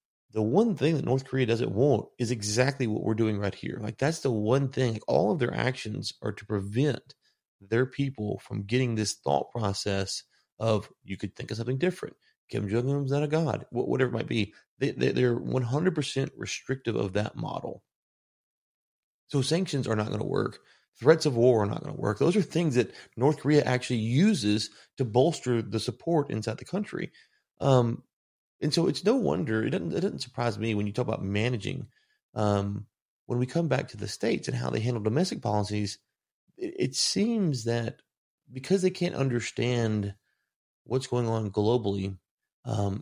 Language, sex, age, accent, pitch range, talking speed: English, male, 30-49, American, 110-135 Hz, 185 wpm